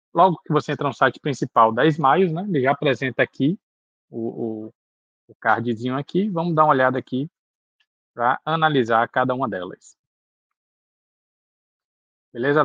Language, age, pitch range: Portuguese, 20-39, 115-145 Hz